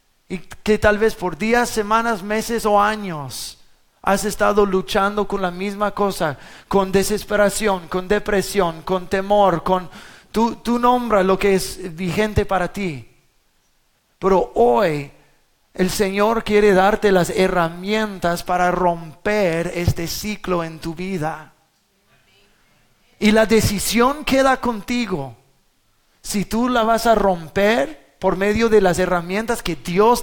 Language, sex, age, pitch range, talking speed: English, male, 30-49, 175-215 Hz, 130 wpm